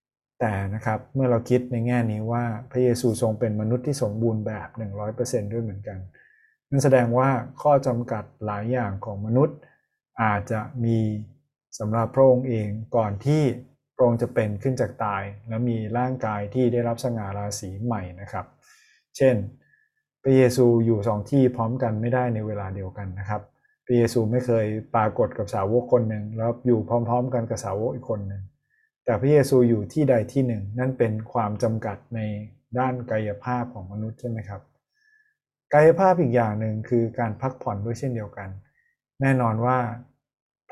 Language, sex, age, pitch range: Thai, male, 20-39, 110-130 Hz